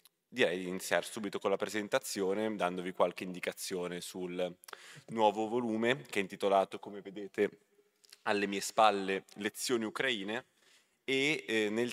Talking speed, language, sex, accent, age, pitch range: 130 wpm, Italian, male, native, 20-39, 95-115 Hz